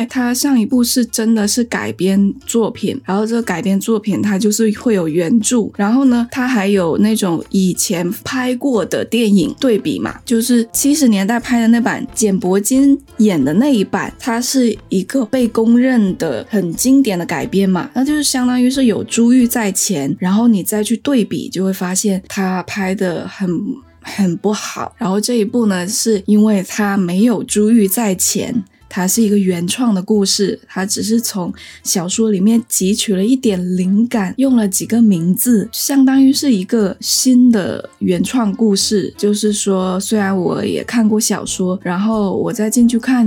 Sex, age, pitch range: female, 20-39, 195-240 Hz